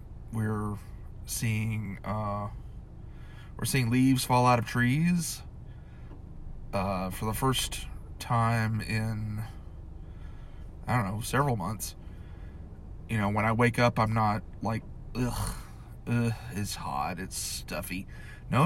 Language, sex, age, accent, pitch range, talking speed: English, male, 20-39, American, 100-120 Hz, 120 wpm